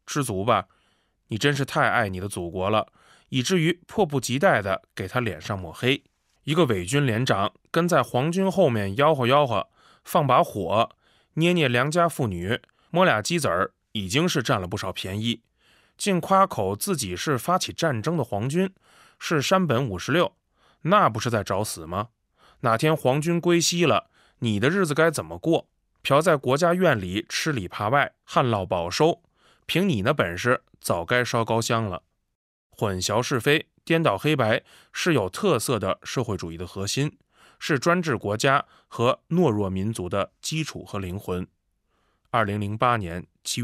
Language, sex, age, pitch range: Chinese, male, 20-39, 100-155 Hz